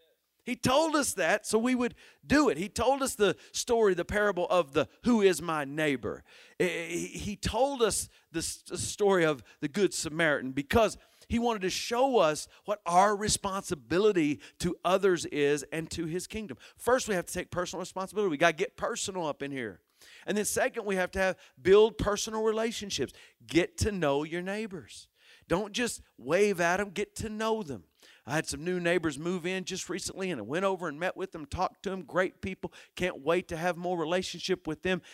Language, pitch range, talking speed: English, 170-220 Hz, 200 wpm